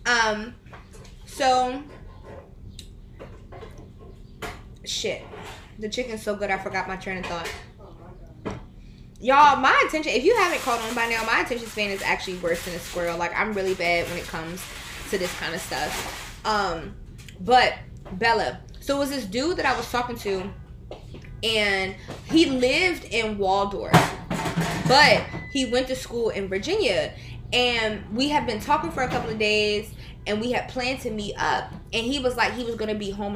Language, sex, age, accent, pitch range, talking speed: English, female, 20-39, American, 195-270 Hz, 170 wpm